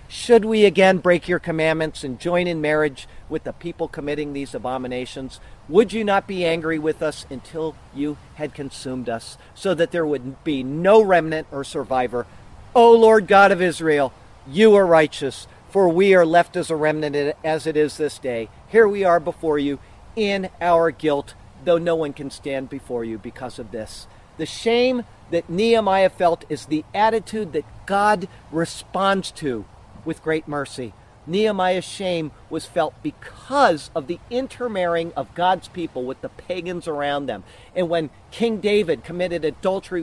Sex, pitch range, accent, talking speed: male, 145-190 Hz, American, 170 wpm